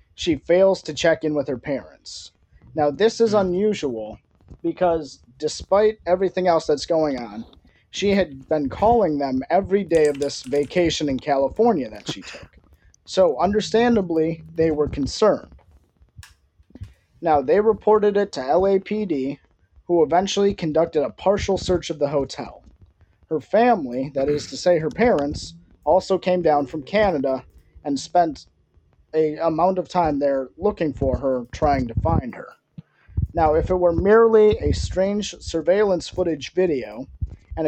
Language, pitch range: English, 135-190 Hz